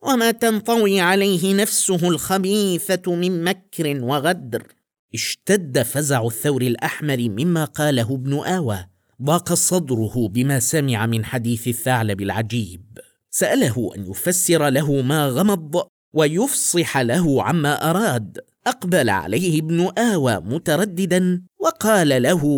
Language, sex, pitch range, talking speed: Arabic, male, 160-240 Hz, 110 wpm